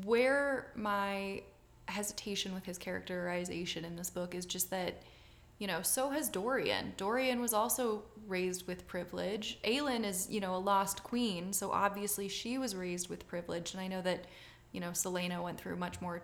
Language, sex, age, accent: English, female, 20-39, American